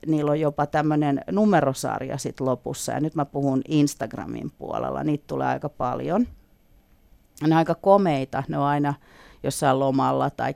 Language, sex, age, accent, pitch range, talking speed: Finnish, female, 40-59, native, 135-165 Hz, 150 wpm